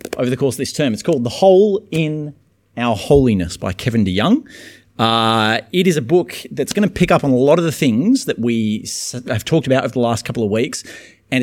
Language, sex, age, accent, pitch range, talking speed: English, male, 30-49, Australian, 90-130 Hz, 230 wpm